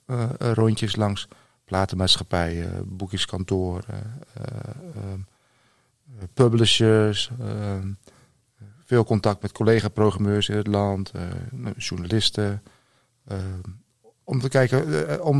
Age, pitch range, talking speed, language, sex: 40-59, 105-125 Hz, 115 wpm, English, male